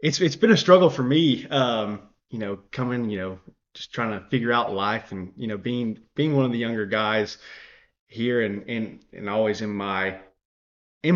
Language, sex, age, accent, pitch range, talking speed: English, male, 20-39, American, 105-135 Hz, 200 wpm